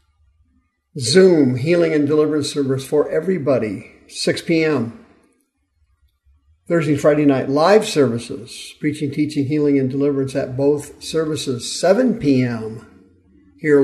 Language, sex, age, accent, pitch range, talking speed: English, male, 50-69, American, 130-155 Hz, 110 wpm